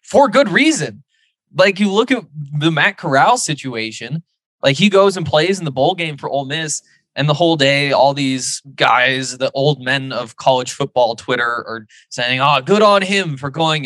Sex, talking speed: male, 195 wpm